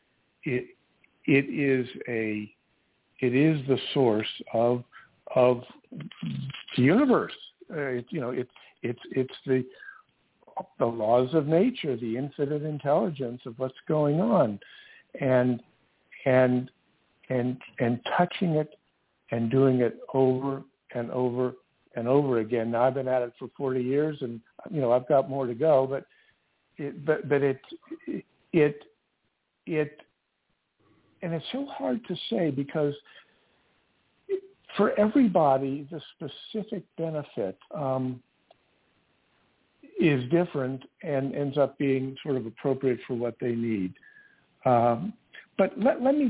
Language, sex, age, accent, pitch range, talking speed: English, male, 60-79, American, 125-155 Hz, 125 wpm